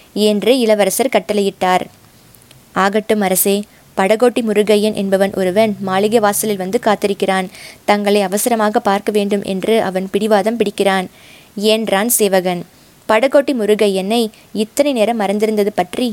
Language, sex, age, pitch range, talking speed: Tamil, female, 20-39, 195-235 Hz, 105 wpm